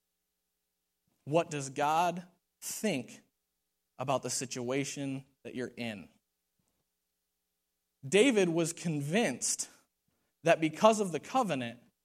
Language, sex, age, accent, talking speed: English, male, 20-39, American, 90 wpm